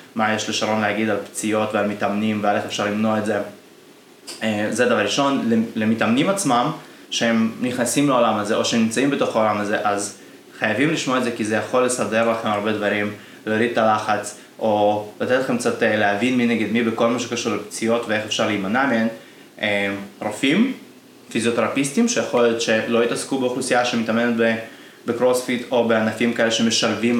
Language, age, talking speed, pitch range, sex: Hebrew, 20-39, 155 wpm, 105-120 Hz, male